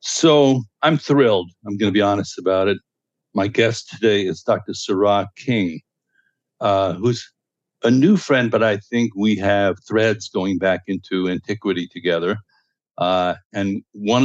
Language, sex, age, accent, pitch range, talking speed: English, male, 60-79, American, 100-125 Hz, 150 wpm